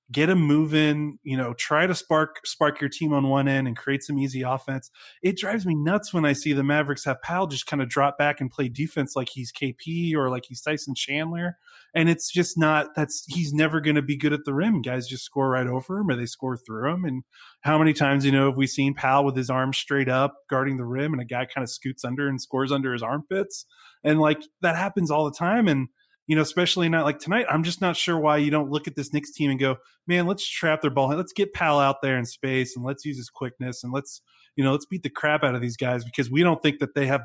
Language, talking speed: English, 265 wpm